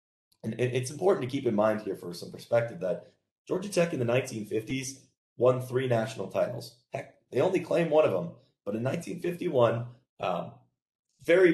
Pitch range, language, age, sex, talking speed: 95-125 Hz, English, 30-49, male, 185 wpm